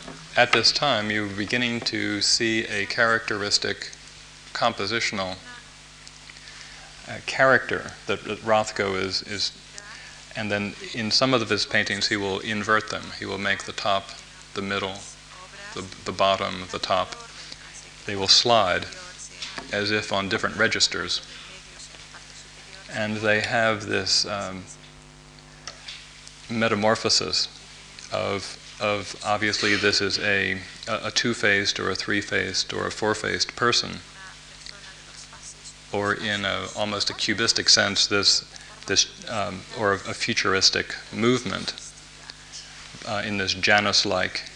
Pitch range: 100-110 Hz